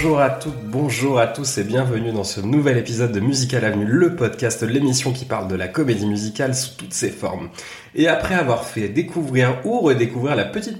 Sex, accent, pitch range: male, French, 110-145 Hz